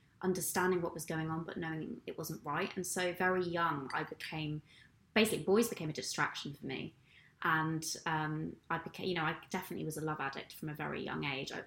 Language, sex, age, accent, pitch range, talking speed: English, female, 20-39, British, 155-195 Hz, 210 wpm